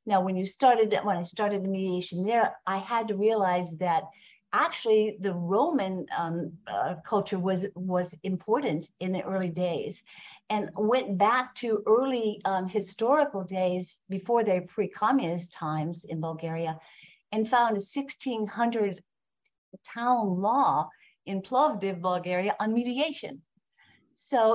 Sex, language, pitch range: female, English, 180-230 Hz